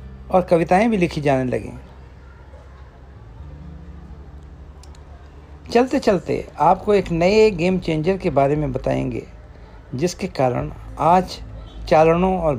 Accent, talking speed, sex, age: native, 105 wpm, male, 60-79